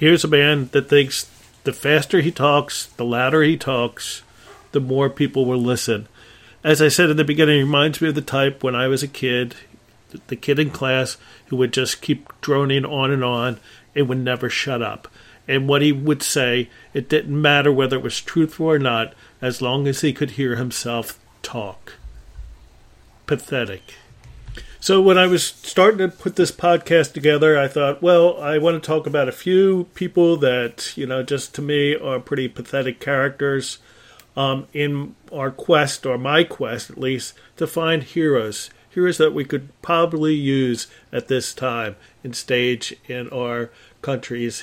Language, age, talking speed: English, 40-59, 175 wpm